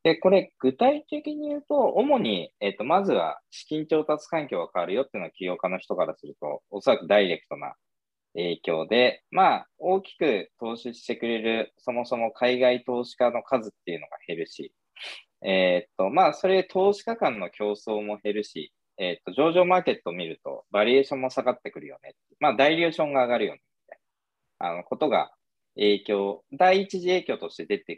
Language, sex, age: Japanese, male, 20-39